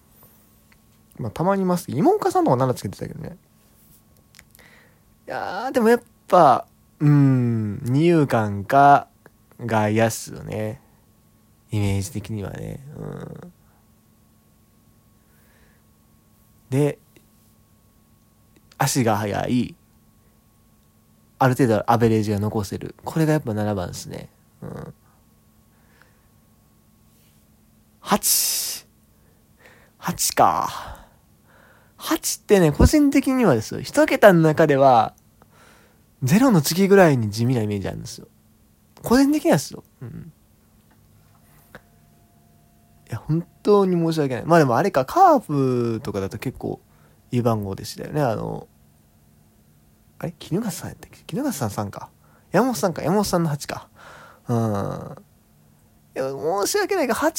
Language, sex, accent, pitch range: Japanese, male, native, 110-170 Hz